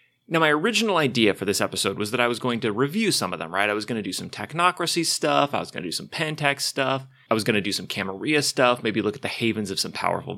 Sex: male